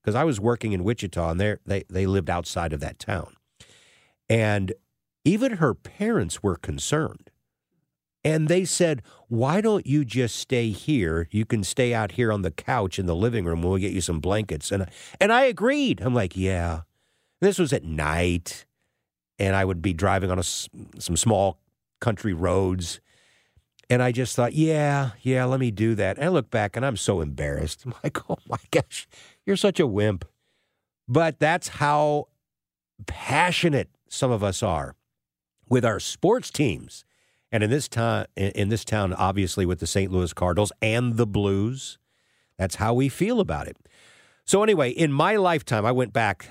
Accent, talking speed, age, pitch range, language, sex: American, 175 wpm, 50-69, 95-130 Hz, English, male